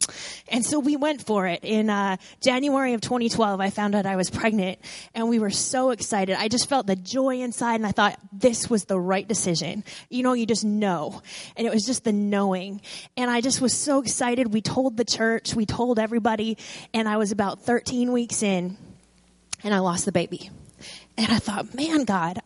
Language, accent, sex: English, American, female